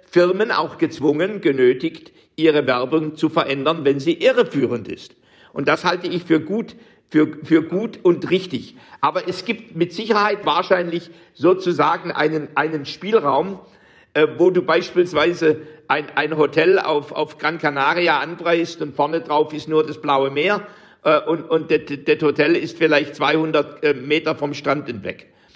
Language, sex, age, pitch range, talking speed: German, male, 60-79, 150-185 Hz, 155 wpm